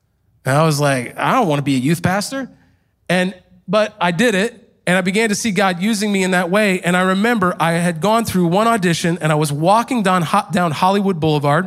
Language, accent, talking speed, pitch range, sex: English, American, 230 wpm, 165-240 Hz, male